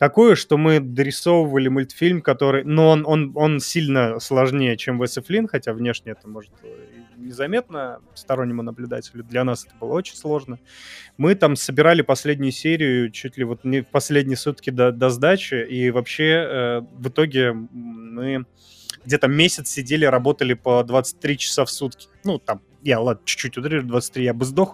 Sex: male